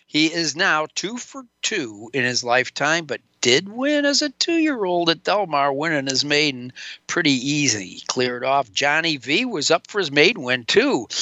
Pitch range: 135-175 Hz